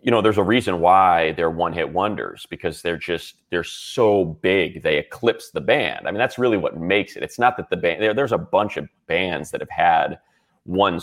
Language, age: English, 30-49